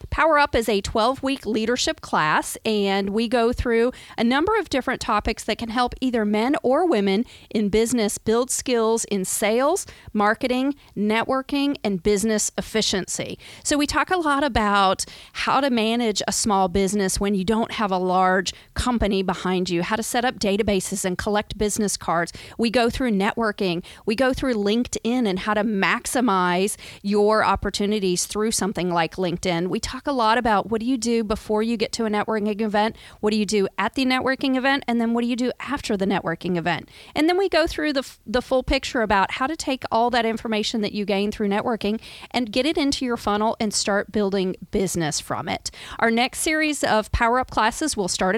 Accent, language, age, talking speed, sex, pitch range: American, English, 40-59, 195 wpm, female, 205-250 Hz